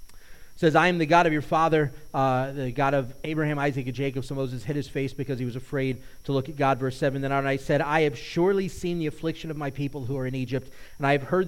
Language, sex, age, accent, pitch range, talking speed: English, male, 30-49, American, 135-165 Hz, 265 wpm